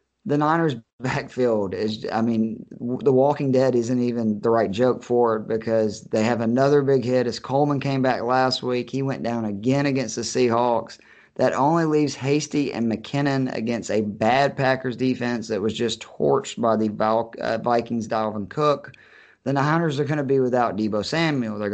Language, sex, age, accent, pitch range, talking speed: English, male, 30-49, American, 115-140 Hz, 180 wpm